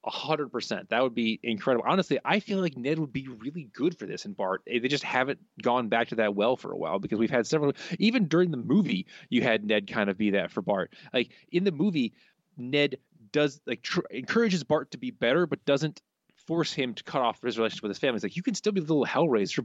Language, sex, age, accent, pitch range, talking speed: English, male, 30-49, American, 110-170 Hz, 250 wpm